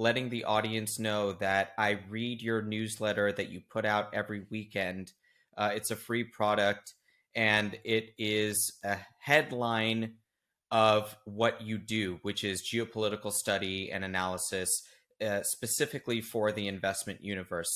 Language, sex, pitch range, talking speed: English, male, 105-120 Hz, 140 wpm